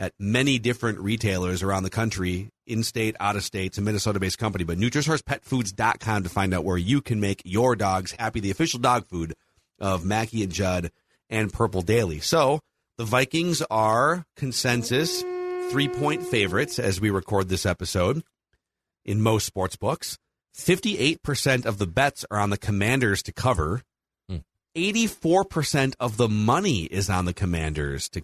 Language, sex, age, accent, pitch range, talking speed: English, male, 40-59, American, 95-120 Hz, 150 wpm